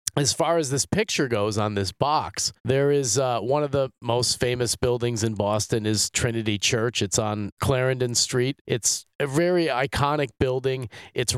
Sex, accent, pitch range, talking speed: male, American, 105-135 Hz, 175 wpm